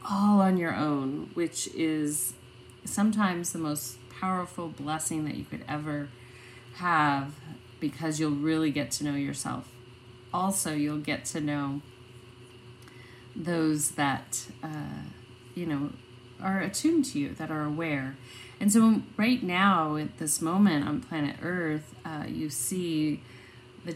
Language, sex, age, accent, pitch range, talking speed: English, female, 30-49, American, 140-170 Hz, 135 wpm